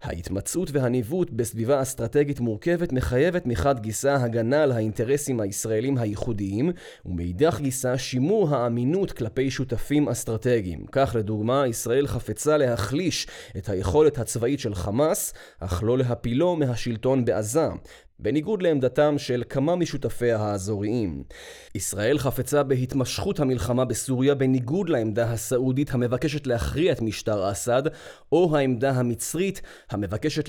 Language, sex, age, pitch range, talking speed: Hebrew, male, 20-39, 115-145 Hz, 115 wpm